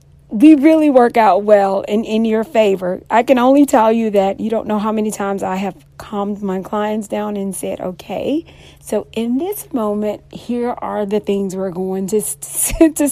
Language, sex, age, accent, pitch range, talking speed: English, female, 40-59, American, 195-240 Hz, 190 wpm